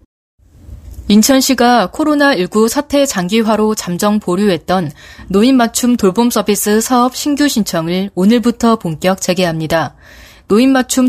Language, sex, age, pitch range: Korean, female, 20-39, 185-250 Hz